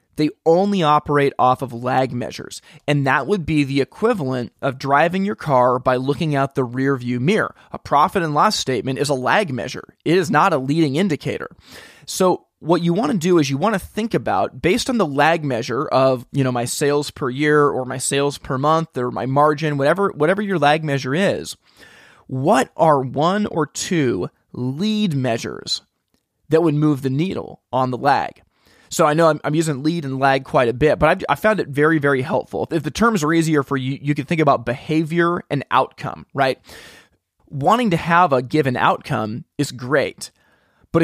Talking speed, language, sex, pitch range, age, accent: 195 wpm, English, male, 130-165 Hz, 30-49, American